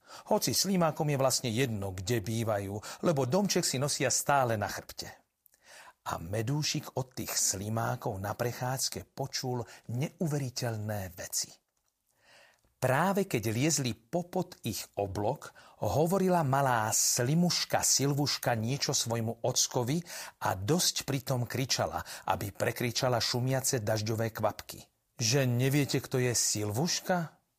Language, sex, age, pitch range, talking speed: Slovak, male, 40-59, 115-145 Hz, 110 wpm